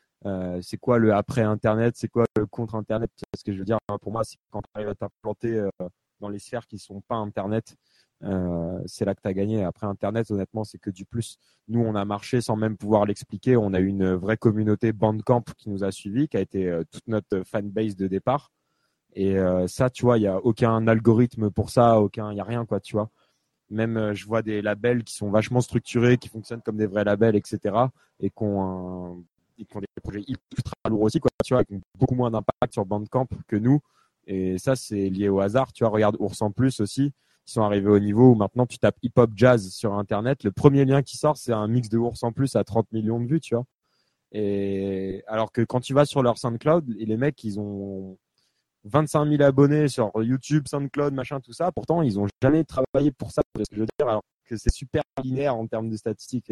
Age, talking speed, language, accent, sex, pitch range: 20-39, 235 wpm, French, French, male, 100-125 Hz